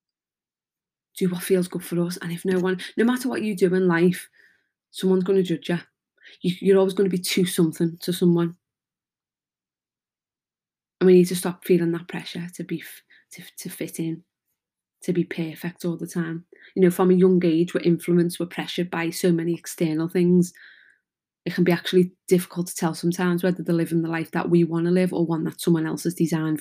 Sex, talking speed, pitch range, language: female, 205 wpm, 170-180 Hz, English